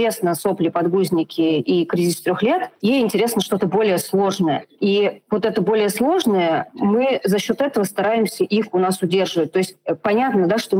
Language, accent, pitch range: Russian, native, 175-215 Hz